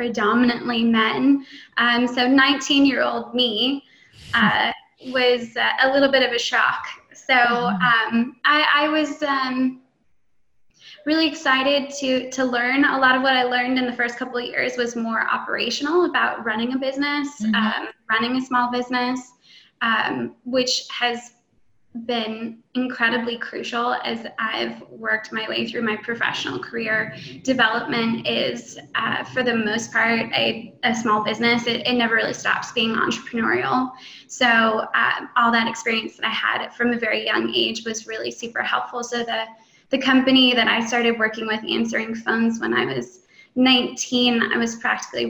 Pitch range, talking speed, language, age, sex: 230-265 Hz, 155 wpm, English, 20-39, female